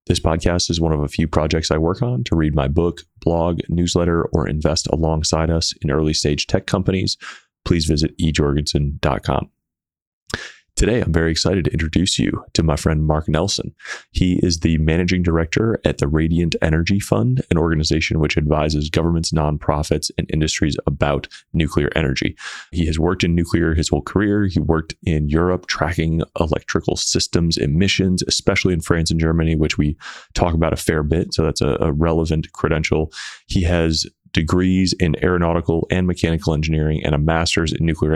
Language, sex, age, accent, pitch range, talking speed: English, male, 30-49, American, 80-90 Hz, 170 wpm